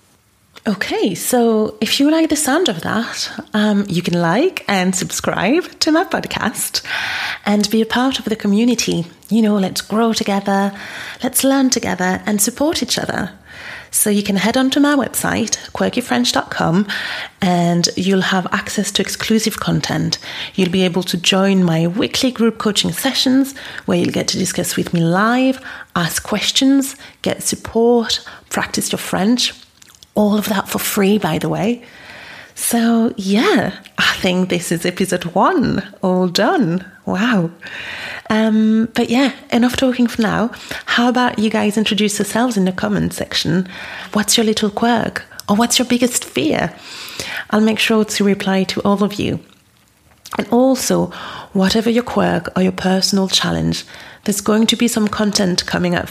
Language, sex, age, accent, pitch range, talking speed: English, female, 30-49, British, 190-240 Hz, 160 wpm